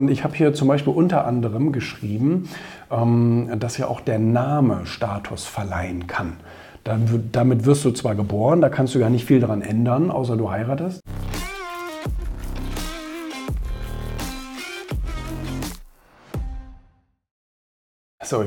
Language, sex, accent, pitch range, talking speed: German, male, German, 110-145 Hz, 105 wpm